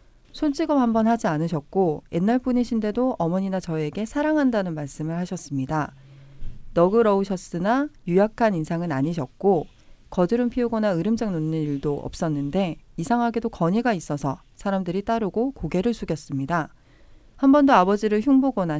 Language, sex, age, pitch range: Korean, female, 40-59, 150-225 Hz